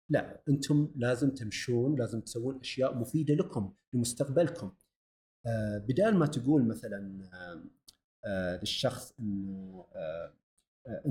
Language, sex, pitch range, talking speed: Arabic, male, 110-155 Hz, 85 wpm